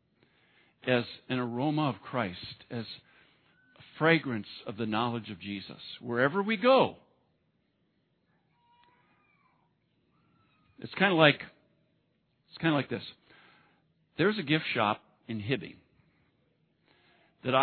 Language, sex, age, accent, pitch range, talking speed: English, male, 50-69, American, 125-165 Hz, 110 wpm